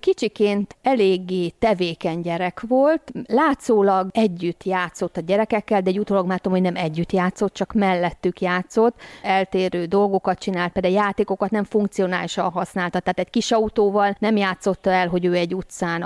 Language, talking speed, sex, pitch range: Hungarian, 150 wpm, female, 170-200 Hz